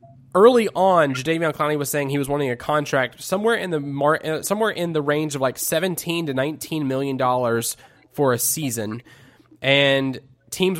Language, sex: English, male